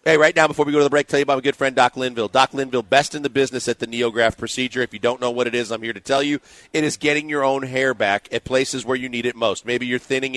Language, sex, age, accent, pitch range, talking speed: English, male, 40-59, American, 120-145 Hz, 325 wpm